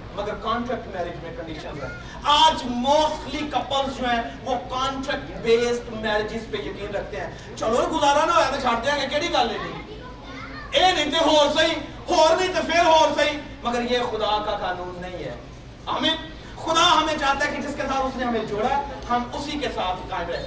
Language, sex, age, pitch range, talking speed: Urdu, male, 40-59, 220-330 Hz, 65 wpm